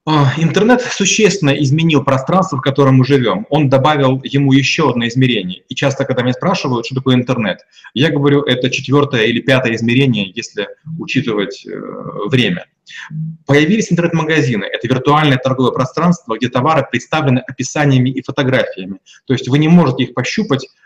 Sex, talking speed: male, 145 wpm